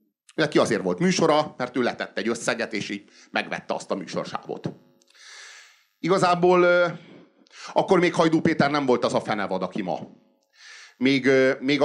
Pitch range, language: 110-175 Hz, Hungarian